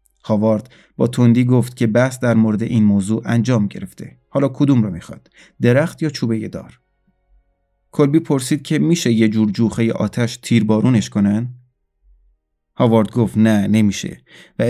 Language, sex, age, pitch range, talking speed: Persian, male, 30-49, 105-125 Hz, 145 wpm